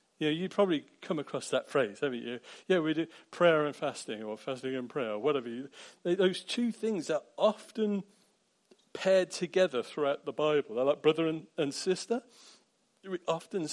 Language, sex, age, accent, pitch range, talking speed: English, male, 40-59, British, 150-215 Hz, 175 wpm